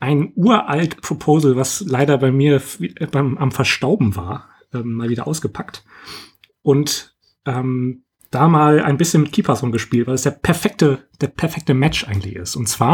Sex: male